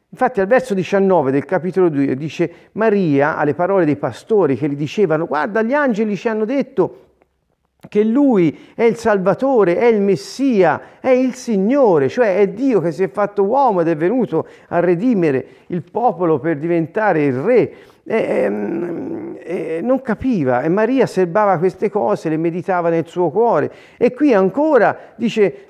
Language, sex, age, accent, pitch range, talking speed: Italian, male, 40-59, native, 155-220 Hz, 165 wpm